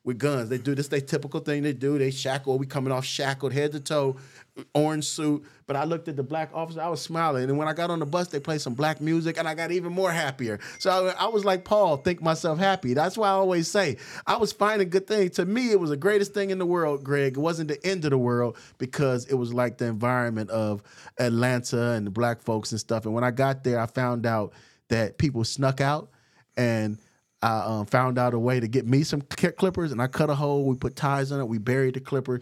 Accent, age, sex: American, 30-49, male